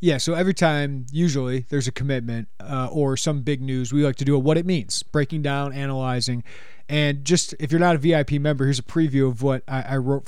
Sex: male